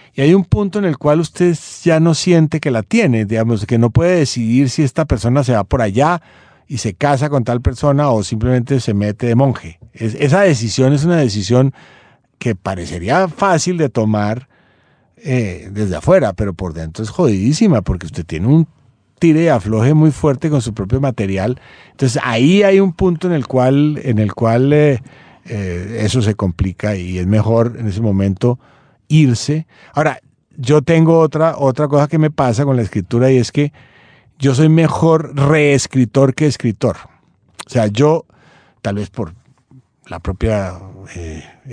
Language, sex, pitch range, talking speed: Spanish, male, 105-150 Hz, 175 wpm